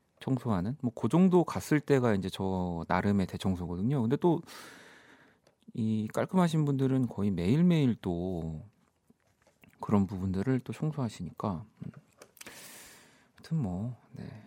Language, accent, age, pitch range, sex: Korean, native, 40-59, 95-145 Hz, male